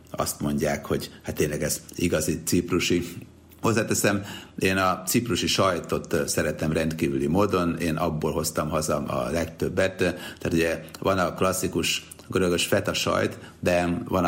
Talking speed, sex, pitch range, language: 135 wpm, male, 80-90 Hz, Hungarian